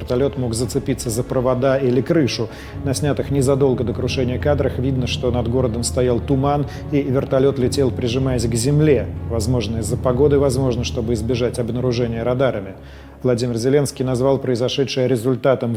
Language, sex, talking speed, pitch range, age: Russian, male, 145 wpm, 125-140 Hz, 40-59